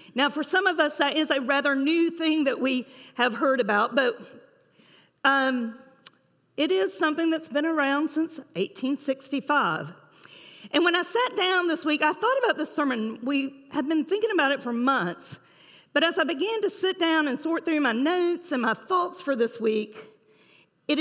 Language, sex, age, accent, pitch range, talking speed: English, female, 50-69, American, 240-320 Hz, 185 wpm